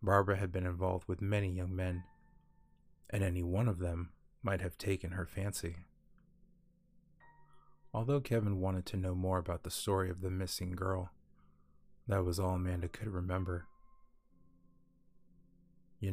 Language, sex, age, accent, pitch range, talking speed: English, male, 20-39, American, 90-110 Hz, 140 wpm